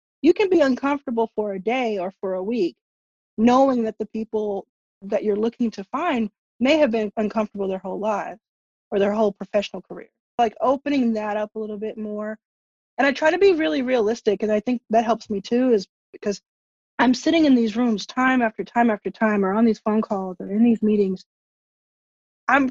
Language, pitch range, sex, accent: English, 200-255 Hz, female, American